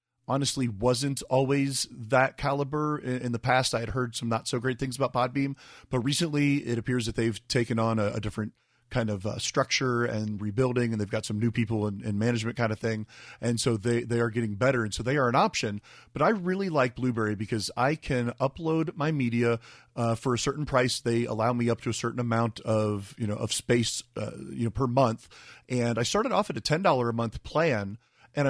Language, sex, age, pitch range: English, male, 30-49, 115-130 Hz